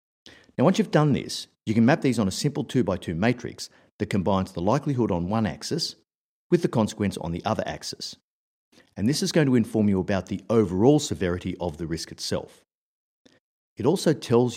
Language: English